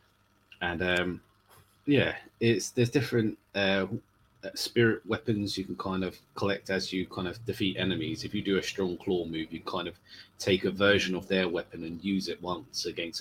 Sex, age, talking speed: male, 30-49, 185 wpm